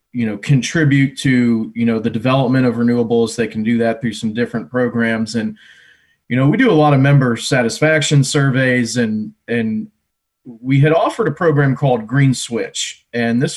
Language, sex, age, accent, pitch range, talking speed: English, male, 30-49, American, 115-140 Hz, 180 wpm